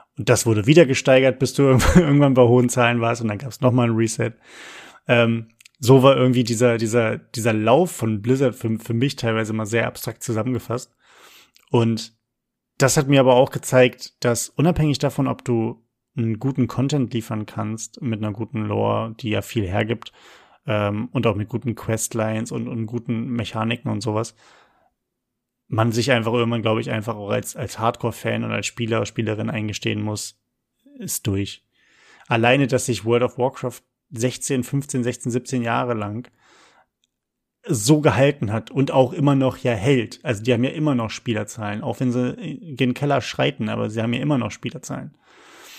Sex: male